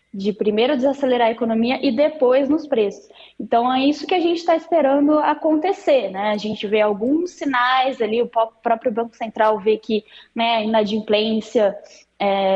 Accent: Brazilian